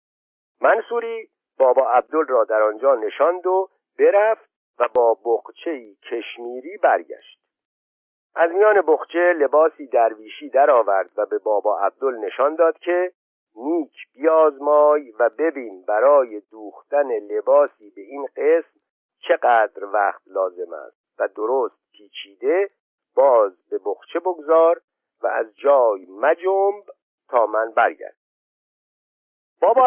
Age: 50-69